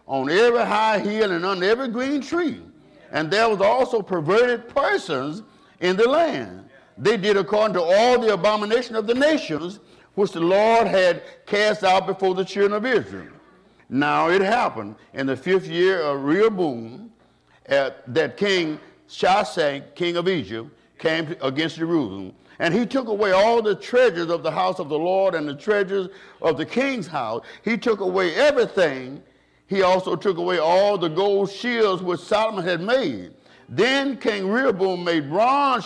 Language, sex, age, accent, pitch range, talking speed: English, male, 50-69, American, 170-230 Hz, 165 wpm